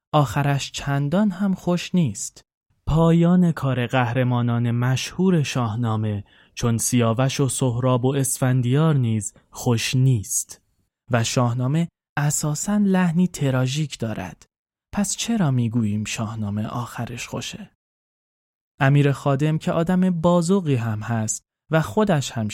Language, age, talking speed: Persian, 20-39, 110 wpm